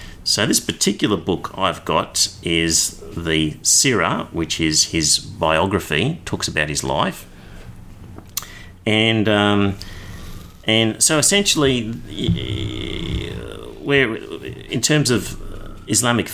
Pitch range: 85-105 Hz